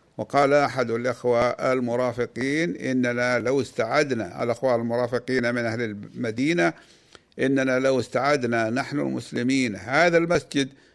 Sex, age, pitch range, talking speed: male, 50-69, 120-145 Hz, 105 wpm